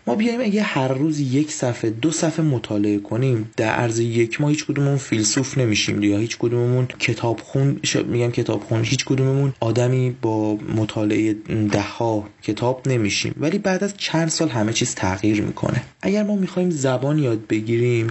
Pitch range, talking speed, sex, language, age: 110-145 Hz, 160 wpm, male, Persian, 30-49